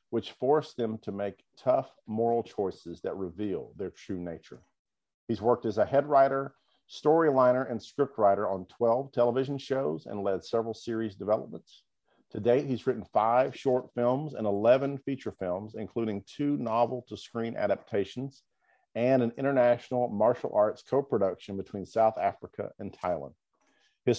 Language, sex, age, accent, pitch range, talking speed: English, male, 50-69, American, 110-130 Hz, 155 wpm